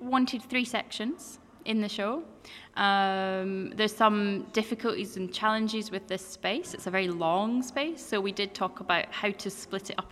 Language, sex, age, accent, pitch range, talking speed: English, female, 10-29, British, 175-210 Hz, 180 wpm